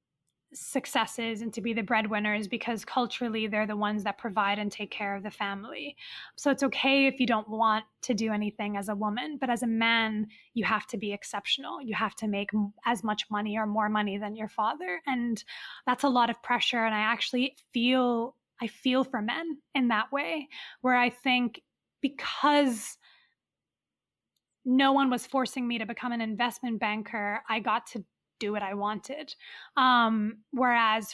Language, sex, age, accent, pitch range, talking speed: English, female, 20-39, American, 215-265 Hz, 180 wpm